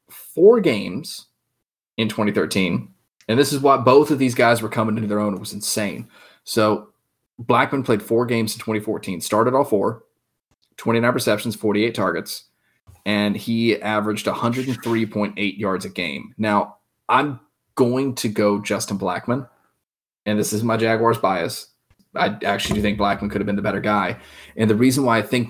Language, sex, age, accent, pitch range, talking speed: English, male, 20-39, American, 105-125 Hz, 165 wpm